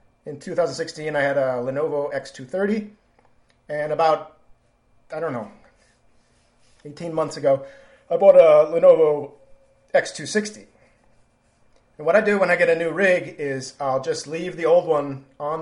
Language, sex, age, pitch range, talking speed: English, male, 30-49, 140-185 Hz, 145 wpm